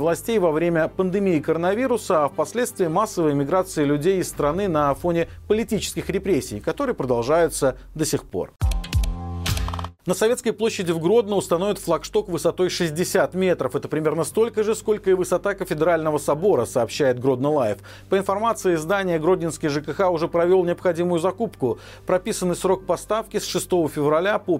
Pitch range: 150-195 Hz